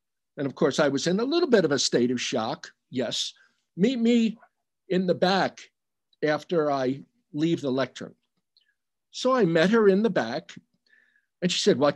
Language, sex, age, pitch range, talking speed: English, male, 60-79, 165-240 Hz, 180 wpm